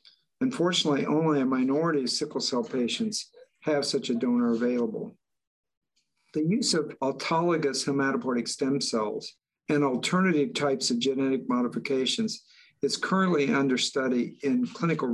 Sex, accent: male, American